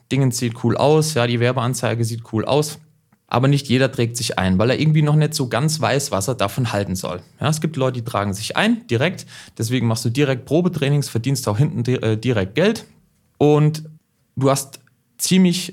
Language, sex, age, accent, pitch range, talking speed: German, male, 30-49, German, 115-155 Hz, 200 wpm